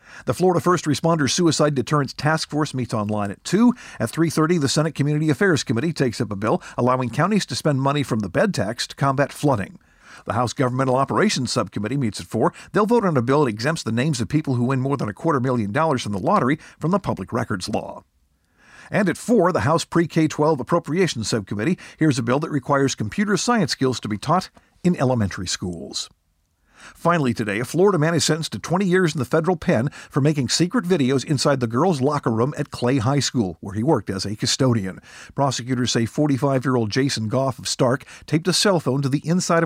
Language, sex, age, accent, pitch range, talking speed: English, male, 50-69, American, 115-160 Hz, 210 wpm